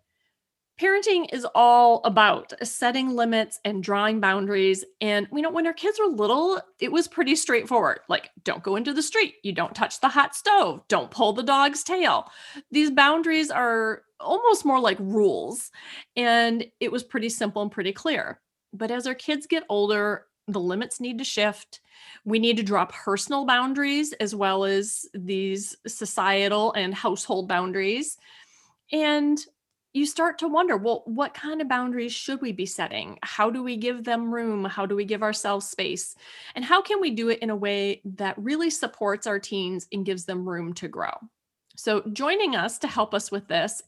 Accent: American